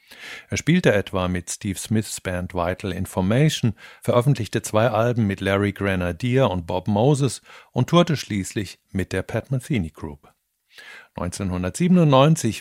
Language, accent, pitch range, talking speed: German, German, 100-130 Hz, 130 wpm